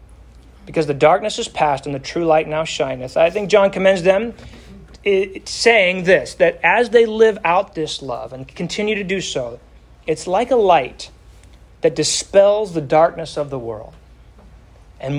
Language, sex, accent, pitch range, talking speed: English, male, American, 140-190 Hz, 165 wpm